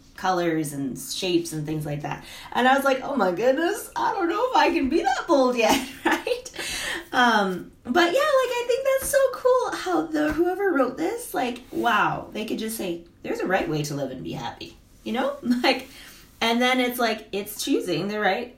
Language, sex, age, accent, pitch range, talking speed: English, female, 20-39, American, 195-300 Hz, 210 wpm